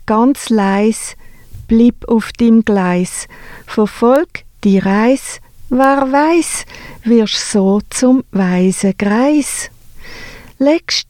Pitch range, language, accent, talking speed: 205-260 Hz, English, Swiss, 90 wpm